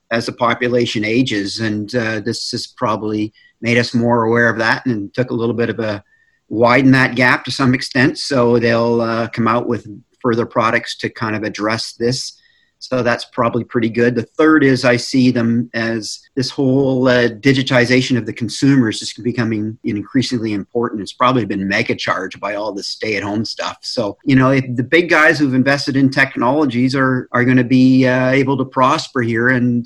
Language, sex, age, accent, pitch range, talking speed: English, male, 40-59, American, 115-130 Hz, 195 wpm